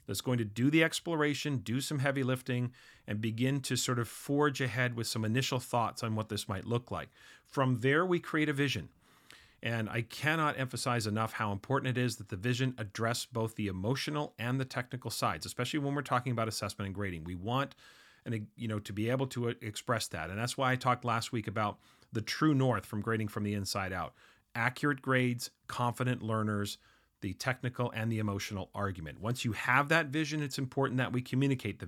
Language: English